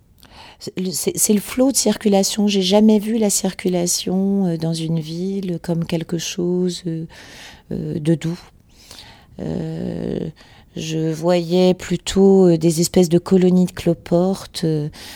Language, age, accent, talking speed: French, 40-59, French, 105 wpm